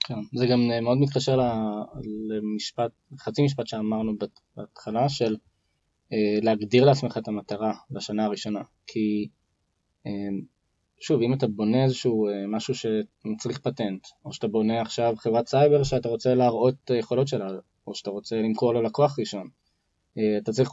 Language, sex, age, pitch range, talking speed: Hebrew, male, 20-39, 105-125 Hz, 135 wpm